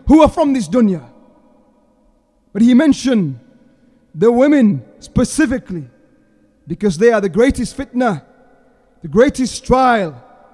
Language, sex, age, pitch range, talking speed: English, male, 30-49, 205-260 Hz, 115 wpm